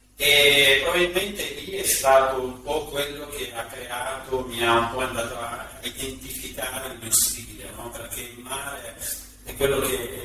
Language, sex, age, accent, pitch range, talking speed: Italian, male, 40-59, native, 115-135 Hz, 170 wpm